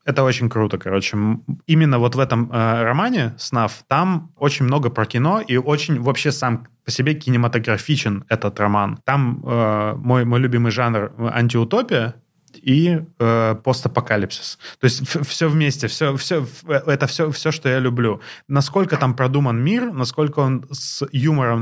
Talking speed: 145 wpm